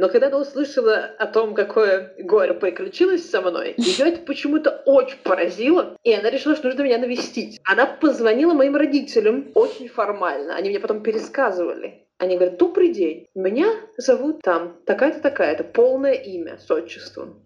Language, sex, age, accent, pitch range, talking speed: Russian, female, 20-39, native, 205-335 Hz, 160 wpm